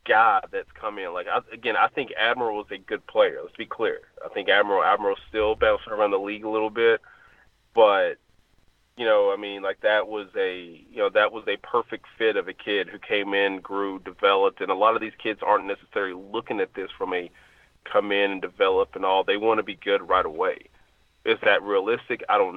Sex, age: male, 30-49